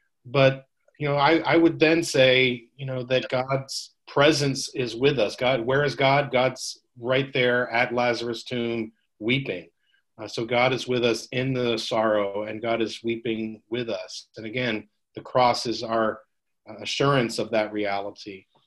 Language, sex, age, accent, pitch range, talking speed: English, male, 40-59, American, 110-130 Hz, 165 wpm